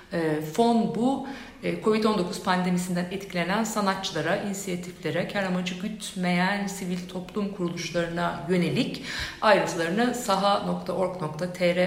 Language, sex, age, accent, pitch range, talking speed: Turkish, female, 60-79, native, 165-210 Hz, 80 wpm